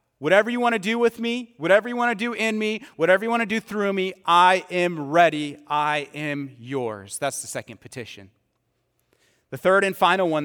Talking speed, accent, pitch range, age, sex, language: 205 wpm, American, 145-210 Hz, 30-49, male, English